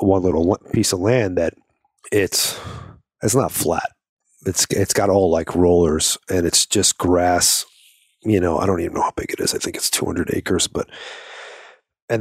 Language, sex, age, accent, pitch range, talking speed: English, male, 40-59, American, 85-110 Hz, 180 wpm